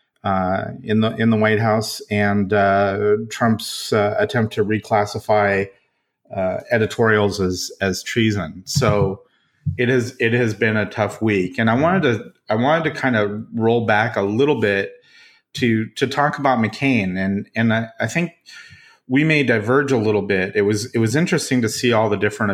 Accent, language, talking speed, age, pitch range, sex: American, English, 180 wpm, 30-49, 100-120 Hz, male